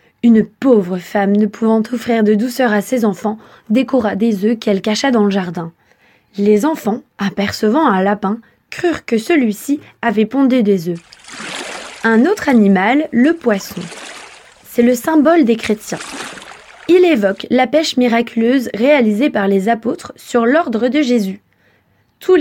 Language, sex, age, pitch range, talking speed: French, female, 20-39, 205-275 Hz, 145 wpm